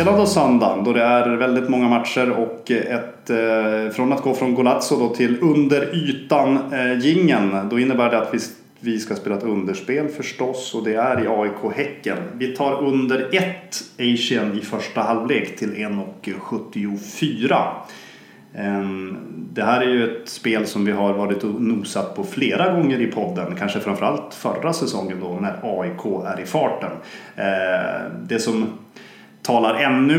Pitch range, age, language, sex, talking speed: 105-130 Hz, 30-49, English, male, 160 wpm